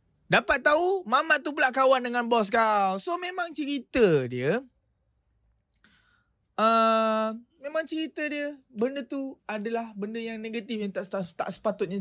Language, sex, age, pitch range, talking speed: Malay, male, 20-39, 150-225 Hz, 140 wpm